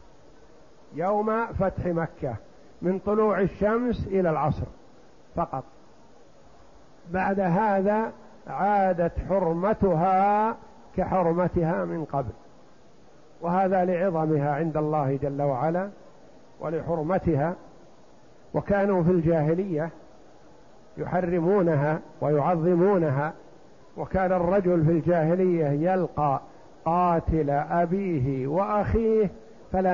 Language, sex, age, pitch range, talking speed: Arabic, male, 50-69, 165-195 Hz, 75 wpm